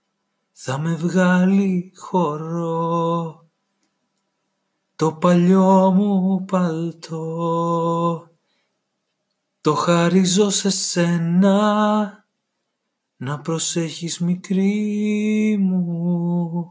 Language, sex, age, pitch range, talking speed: Greek, male, 30-49, 150-180 Hz, 55 wpm